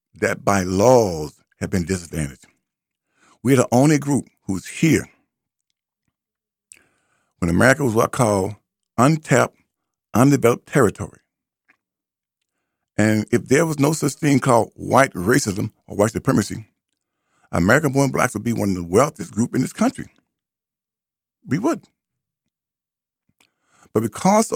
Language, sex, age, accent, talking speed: English, male, 50-69, American, 120 wpm